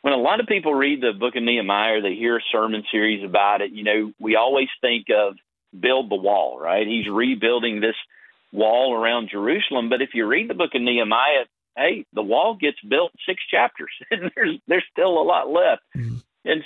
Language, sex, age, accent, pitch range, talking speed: English, male, 40-59, American, 110-145 Hz, 205 wpm